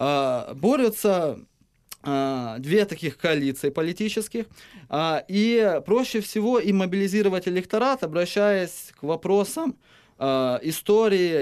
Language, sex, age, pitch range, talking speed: Ukrainian, male, 20-39, 145-195 Hz, 80 wpm